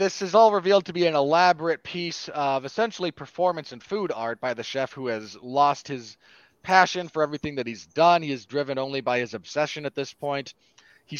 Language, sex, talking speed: English, male, 210 wpm